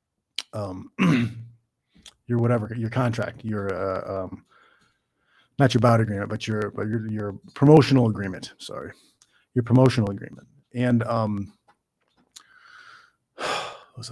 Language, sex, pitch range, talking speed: English, male, 120-150 Hz, 105 wpm